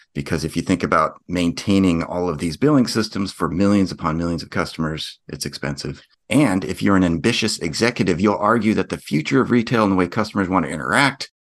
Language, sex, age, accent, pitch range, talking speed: English, male, 40-59, American, 85-100 Hz, 205 wpm